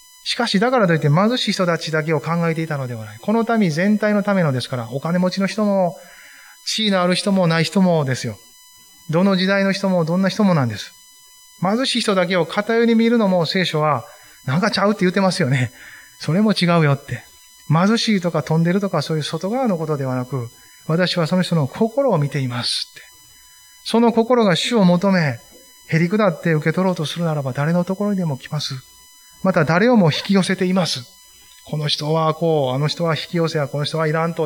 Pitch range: 145-205 Hz